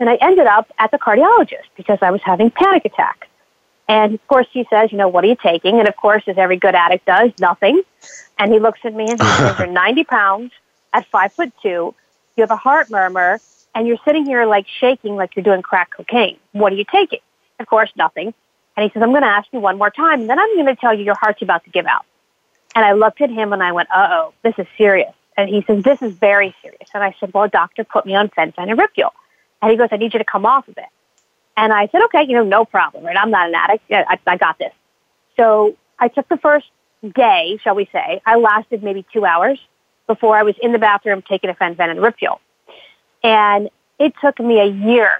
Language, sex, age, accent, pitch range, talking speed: English, female, 40-59, American, 200-240 Hz, 250 wpm